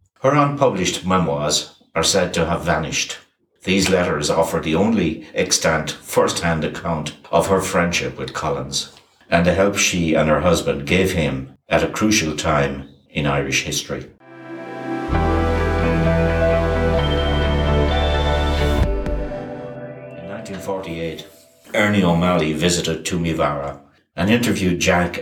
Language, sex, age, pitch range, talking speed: English, male, 60-79, 75-95 Hz, 110 wpm